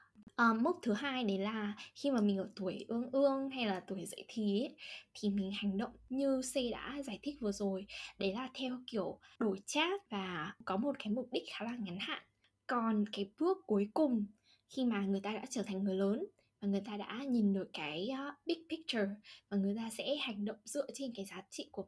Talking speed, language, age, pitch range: 220 wpm, Vietnamese, 10-29, 200-265 Hz